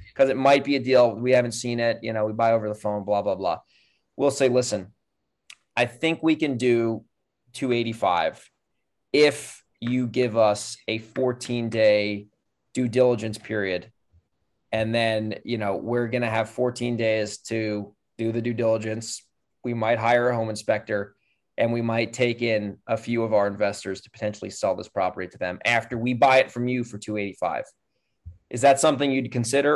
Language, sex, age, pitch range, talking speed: English, male, 20-39, 110-130 Hz, 175 wpm